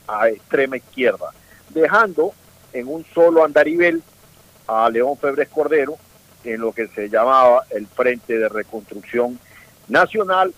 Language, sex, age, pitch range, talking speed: Spanish, male, 50-69, 115-160 Hz, 125 wpm